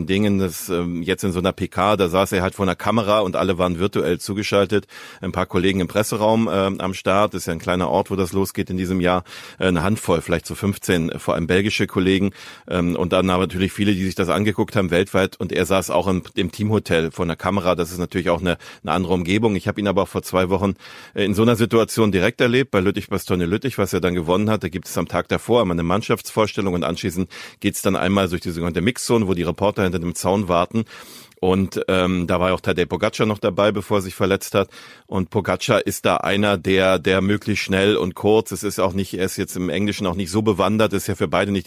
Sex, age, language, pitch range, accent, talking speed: male, 40-59, German, 95-105 Hz, German, 245 wpm